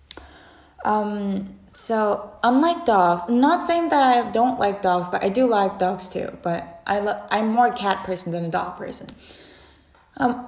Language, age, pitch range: English, 20-39, 180-235 Hz